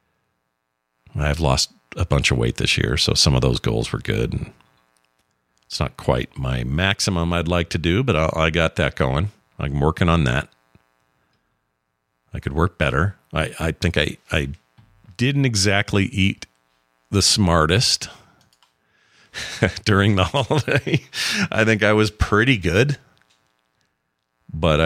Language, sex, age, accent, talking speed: English, male, 50-69, American, 140 wpm